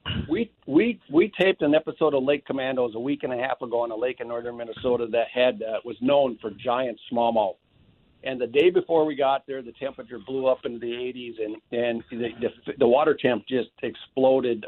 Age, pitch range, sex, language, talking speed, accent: 50-69, 120-150 Hz, male, English, 215 wpm, American